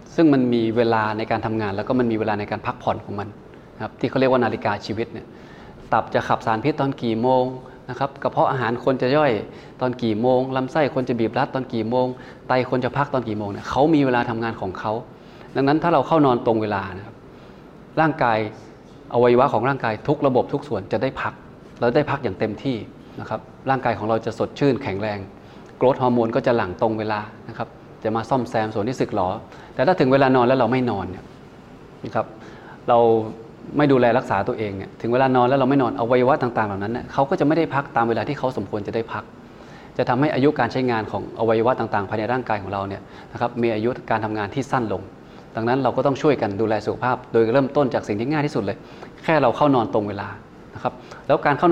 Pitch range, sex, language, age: 110-135 Hz, male, Thai, 20-39